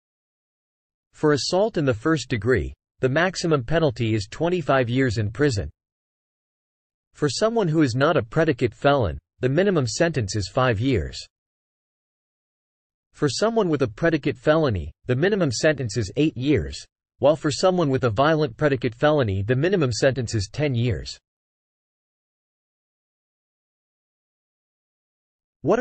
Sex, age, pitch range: male, 40-59, 115-155 Hz